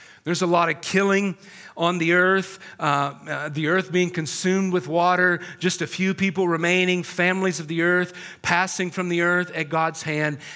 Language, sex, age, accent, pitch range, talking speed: English, male, 40-59, American, 165-190 Hz, 175 wpm